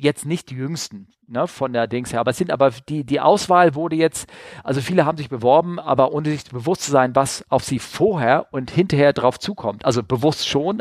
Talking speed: 215 wpm